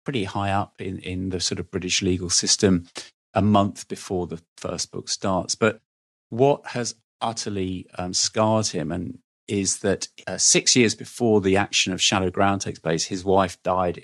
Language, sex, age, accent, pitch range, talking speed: English, male, 40-59, British, 90-110 Hz, 180 wpm